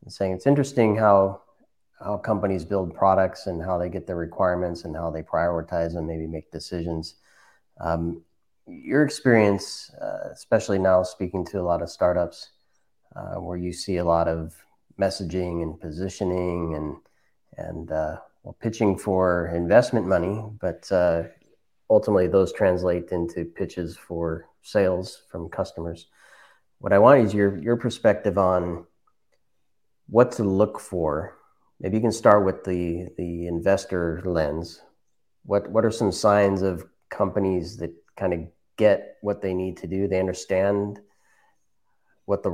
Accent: American